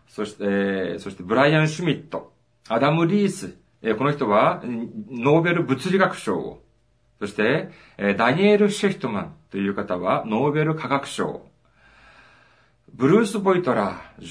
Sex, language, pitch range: male, Japanese, 120-195 Hz